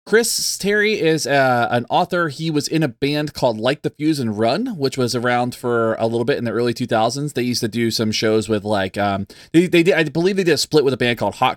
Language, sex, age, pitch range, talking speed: English, male, 20-39, 120-150 Hz, 265 wpm